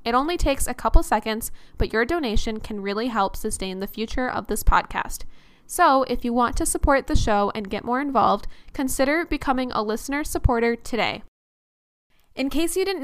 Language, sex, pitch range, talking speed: English, female, 215-270 Hz, 185 wpm